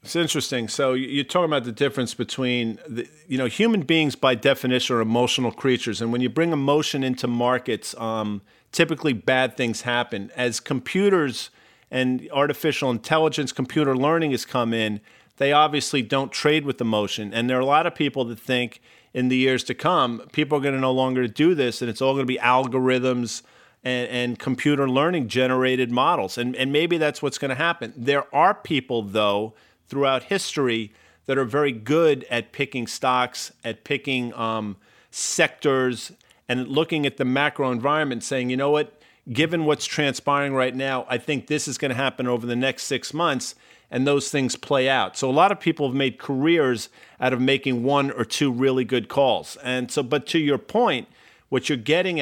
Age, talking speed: 40-59, 190 wpm